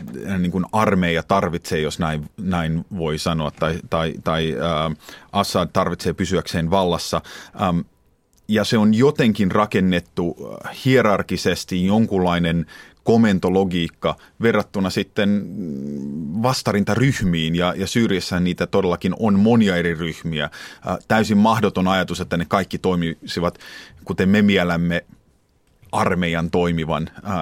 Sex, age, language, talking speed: male, 30-49, Finnish, 110 wpm